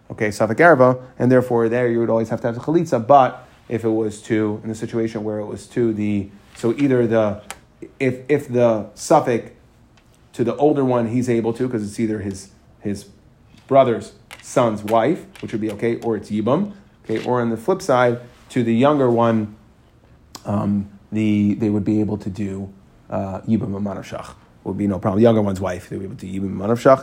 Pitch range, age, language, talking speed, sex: 110-130 Hz, 30-49, English, 200 wpm, male